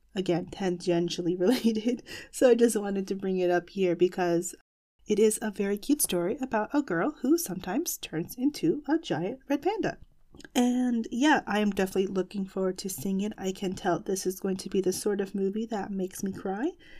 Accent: American